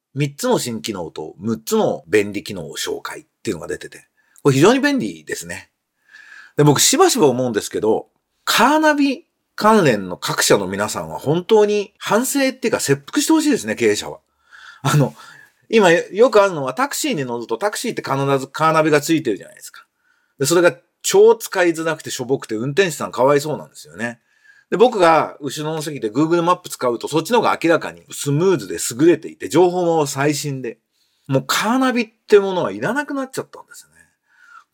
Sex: male